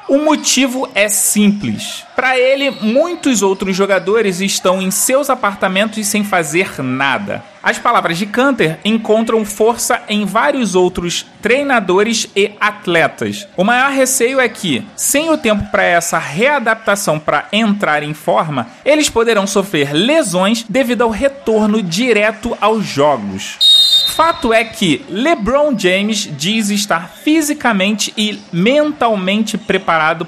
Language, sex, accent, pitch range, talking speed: Portuguese, male, Brazilian, 190-260 Hz, 130 wpm